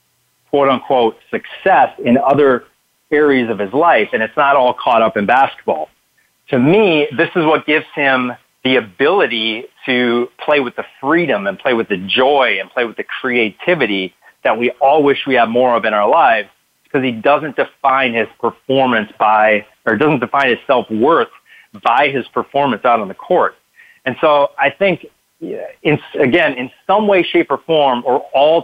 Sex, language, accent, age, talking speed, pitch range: male, English, American, 40-59, 180 wpm, 110-140 Hz